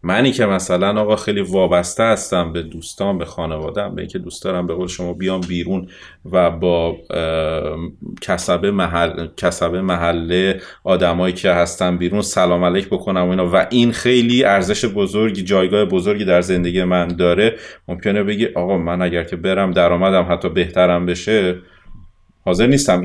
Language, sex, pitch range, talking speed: Persian, male, 90-125 Hz, 150 wpm